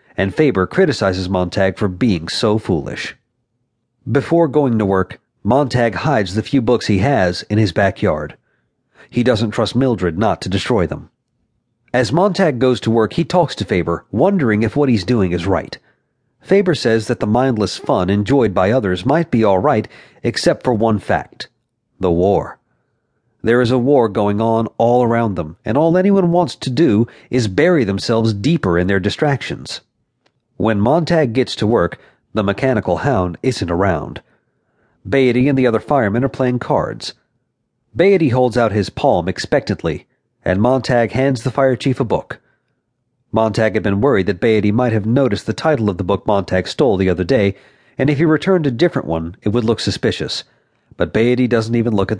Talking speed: 180 wpm